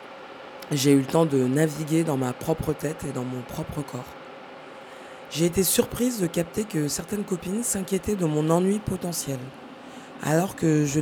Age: 20-39